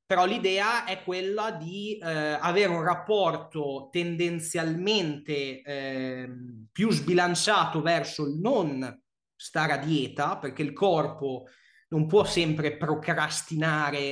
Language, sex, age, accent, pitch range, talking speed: Italian, male, 20-39, native, 145-180 Hz, 110 wpm